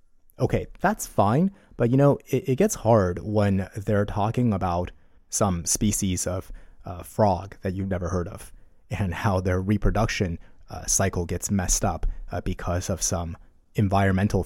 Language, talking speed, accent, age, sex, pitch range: English, 160 wpm, American, 30-49, male, 90-115 Hz